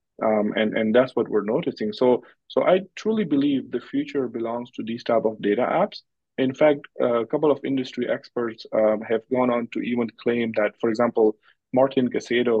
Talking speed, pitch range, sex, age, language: 190 wpm, 110-135 Hz, male, 30-49, English